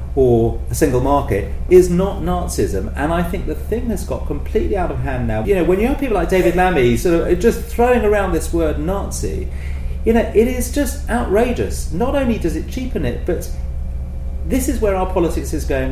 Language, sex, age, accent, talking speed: English, male, 40-59, British, 210 wpm